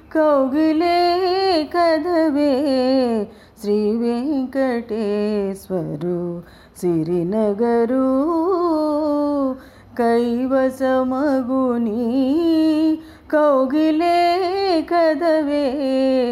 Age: 30-49